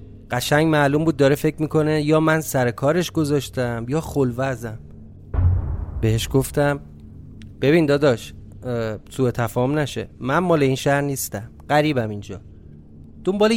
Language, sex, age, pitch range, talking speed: Persian, male, 30-49, 110-155 Hz, 125 wpm